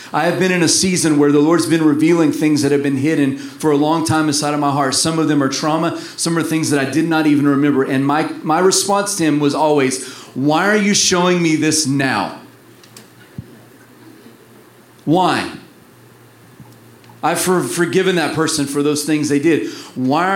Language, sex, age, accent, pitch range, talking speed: English, male, 40-59, American, 150-180 Hz, 190 wpm